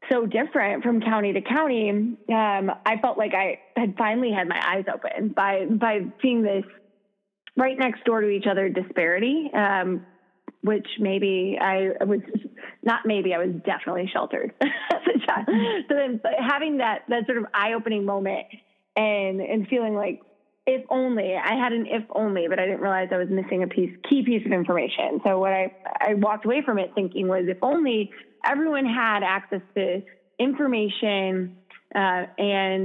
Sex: female